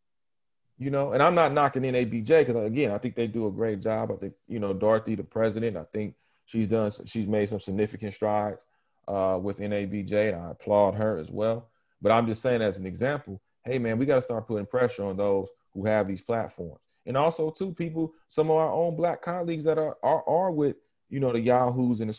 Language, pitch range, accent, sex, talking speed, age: English, 110-155 Hz, American, male, 220 wpm, 30-49